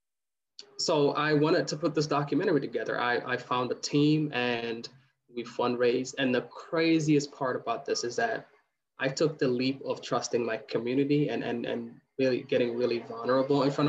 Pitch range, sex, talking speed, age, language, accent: 120-150 Hz, male, 175 wpm, 20-39, English, American